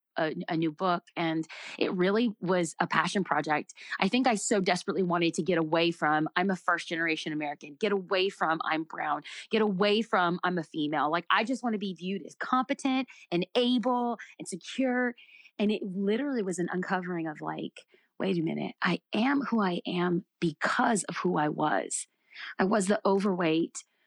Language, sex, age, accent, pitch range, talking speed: English, female, 30-49, American, 170-210 Hz, 185 wpm